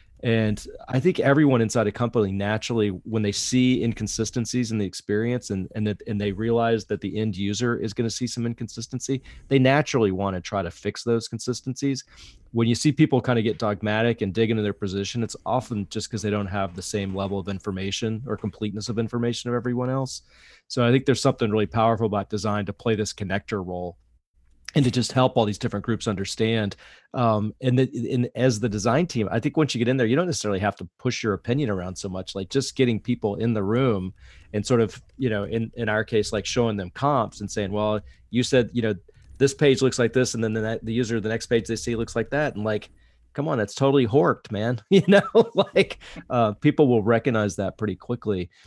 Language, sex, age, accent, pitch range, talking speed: English, male, 30-49, American, 100-120 Hz, 225 wpm